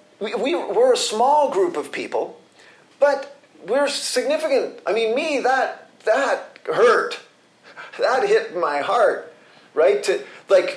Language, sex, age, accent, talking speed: English, male, 40-59, American, 135 wpm